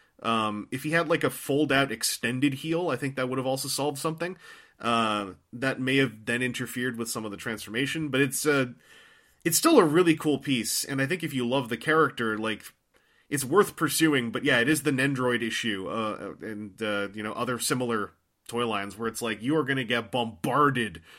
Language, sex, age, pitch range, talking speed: English, male, 30-49, 120-155 Hz, 210 wpm